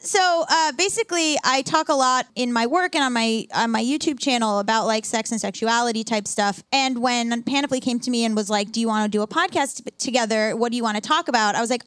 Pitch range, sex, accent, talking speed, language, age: 220-290 Hz, female, American, 265 wpm, English, 10-29